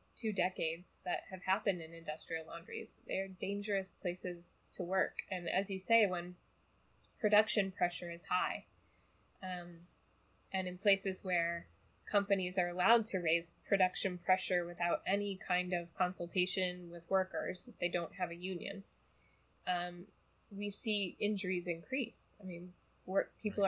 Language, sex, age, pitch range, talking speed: English, female, 10-29, 175-200 Hz, 140 wpm